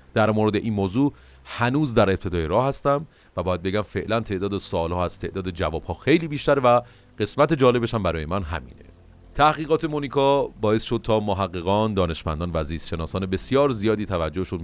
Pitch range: 85-110 Hz